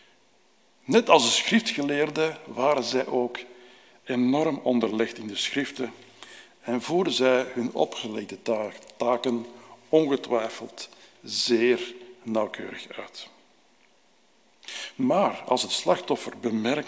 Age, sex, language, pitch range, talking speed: 60-79, male, Dutch, 120-160 Hz, 80 wpm